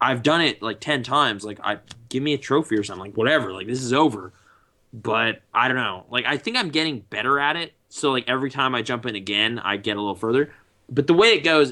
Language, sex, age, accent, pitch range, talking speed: English, male, 20-39, American, 105-140 Hz, 255 wpm